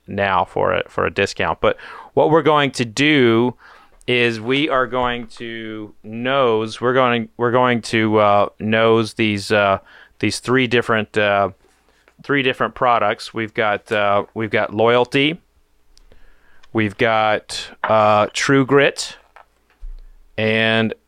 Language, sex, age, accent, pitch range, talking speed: English, male, 30-49, American, 105-120 Hz, 130 wpm